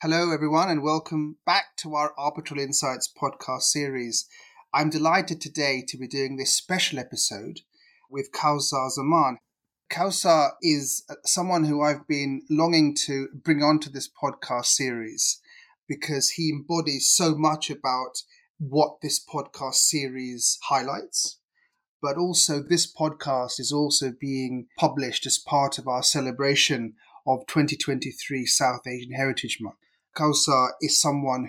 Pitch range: 130-155 Hz